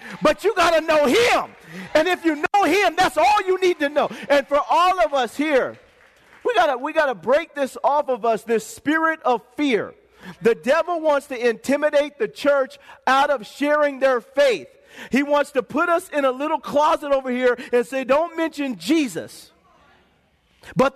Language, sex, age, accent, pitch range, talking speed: English, male, 40-59, American, 250-305 Hz, 185 wpm